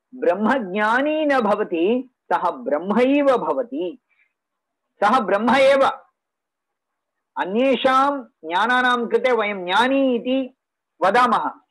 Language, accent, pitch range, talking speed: English, Indian, 205-265 Hz, 90 wpm